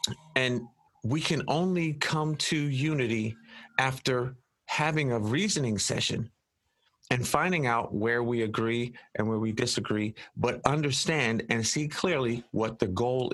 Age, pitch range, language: 40-59, 110-140 Hz, English